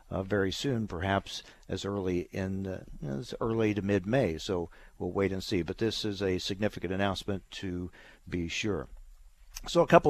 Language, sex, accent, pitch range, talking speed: English, male, American, 90-110 Hz, 170 wpm